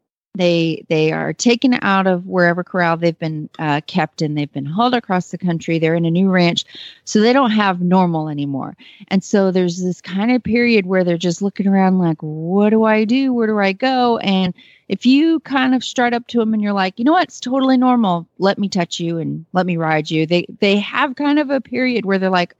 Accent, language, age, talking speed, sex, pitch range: American, English, 30-49, 235 wpm, female, 175-240 Hz